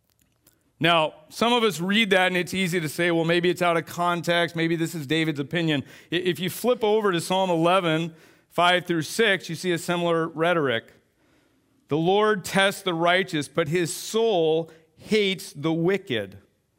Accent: American